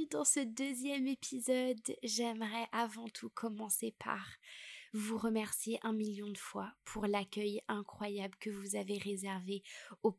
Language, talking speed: French, 135 wpm